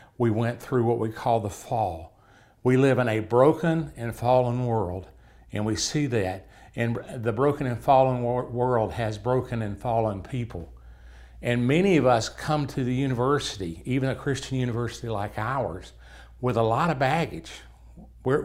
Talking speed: 165 wpm